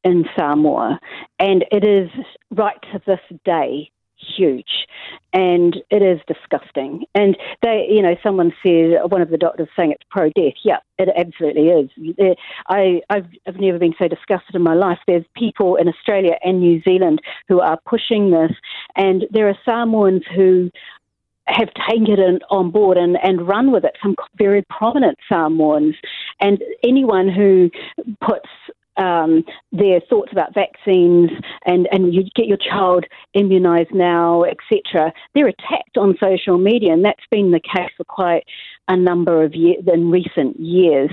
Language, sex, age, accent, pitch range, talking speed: English, female, 50-69, Australian, 175-205 Hz, 155 wpm